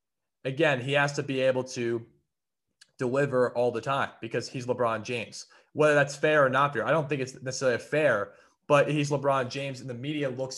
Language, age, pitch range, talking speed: English, 20-39, 115-135 Hz, 200 wpm